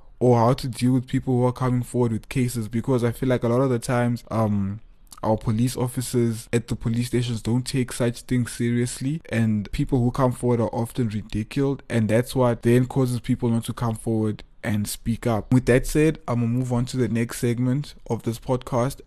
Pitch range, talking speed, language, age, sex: 115-130 Hz, 220 wpm, English, 20-39, male